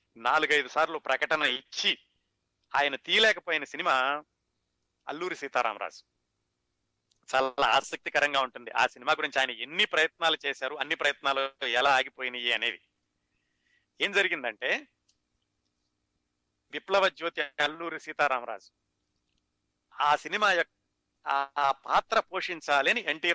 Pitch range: 120-155 Hz